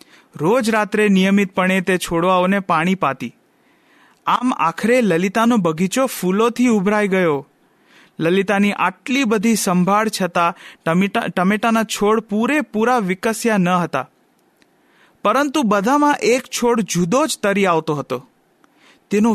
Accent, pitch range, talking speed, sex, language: Indian, 185-240 Hz, 120 wpm, male, English